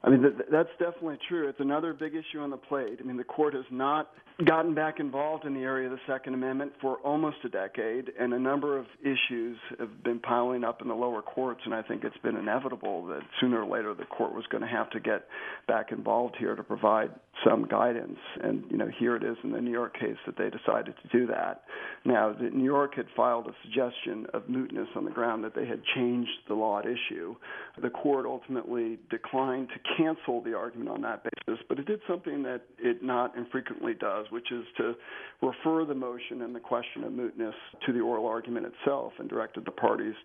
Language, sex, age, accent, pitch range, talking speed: English, male, 50-69, American, 125-160 Hz, 220 wpm